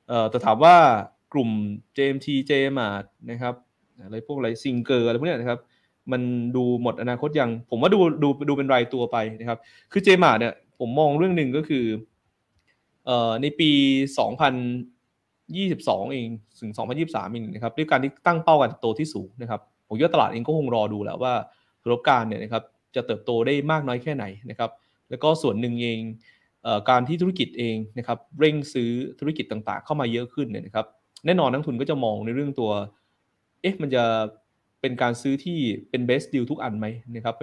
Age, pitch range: 20-39, 110-140 Hz